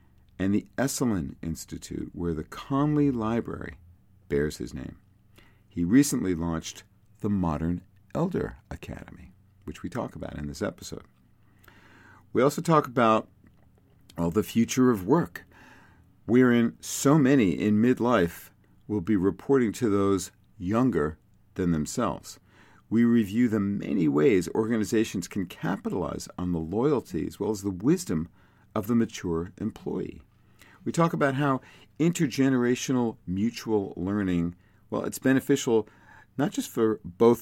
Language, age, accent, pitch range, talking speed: English, 50-69, American, 90-115 Hz, 130 wpm